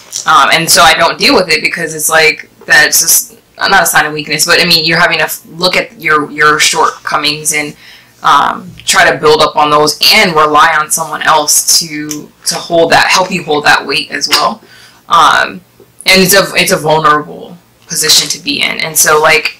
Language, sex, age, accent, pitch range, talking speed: English, female, 20-39, American, 155-170 Hz, 205 wpm